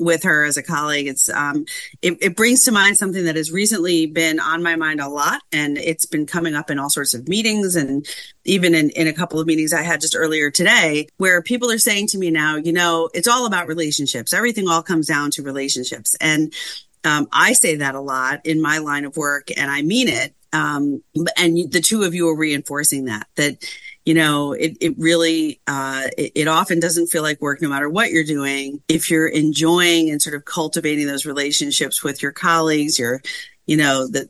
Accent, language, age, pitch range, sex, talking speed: American, English, 40-59, 145-170 Hz, female, 215 wpm